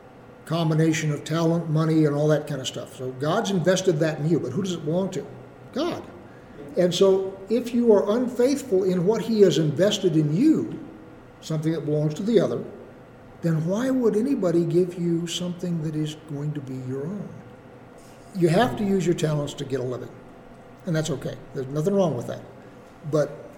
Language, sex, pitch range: English, male, 135-185 Hz